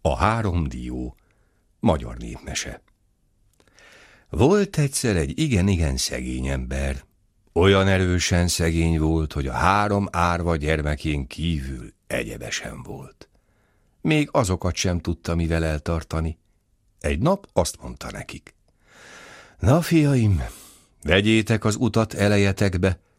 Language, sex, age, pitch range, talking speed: Hungarian, male, 60-79, 80-105 Hz, 105 wpm